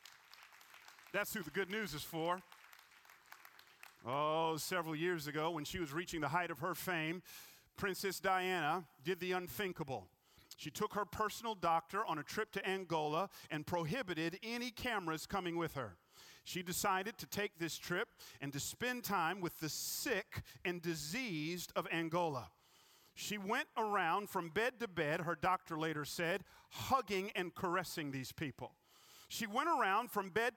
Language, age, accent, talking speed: English, 40-59, American, 155 wpm